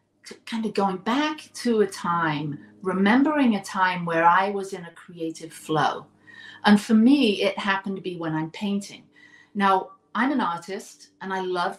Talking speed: 175 wpm